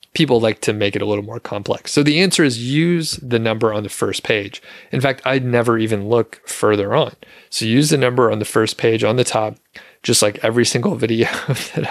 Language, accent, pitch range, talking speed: English, American, 105-125 Hz, 225 wpm